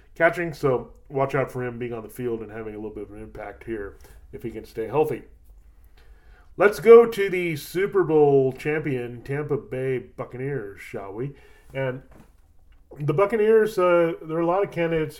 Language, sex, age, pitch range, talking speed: English, male, 30-49, 120-150 Hz, 180 wpm